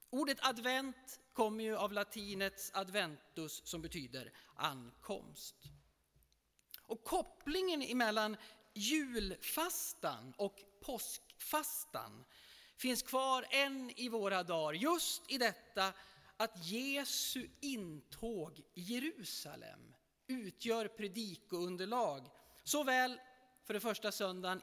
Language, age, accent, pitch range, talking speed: Swedish, 40-59, native, 185-255 Hz, 95 wpm